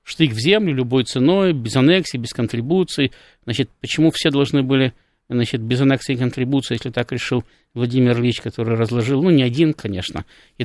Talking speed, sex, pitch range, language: 170 wpm, male, 120-155 Hz, Russian